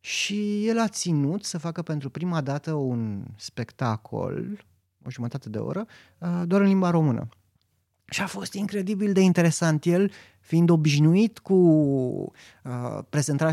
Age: 30-49